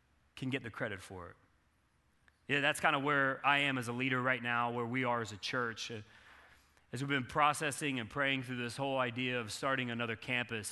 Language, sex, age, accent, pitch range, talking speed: English, male, 30-49, American, 115-150 Hz, 215 wpm